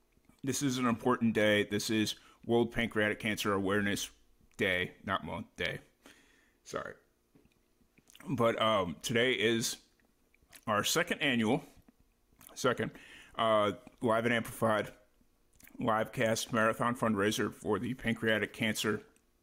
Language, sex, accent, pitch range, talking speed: English, male, American, 105-115 Hz, 110 wpm